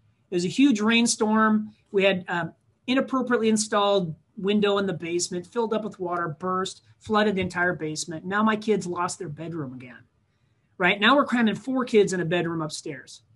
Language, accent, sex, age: English, American, male, 40-59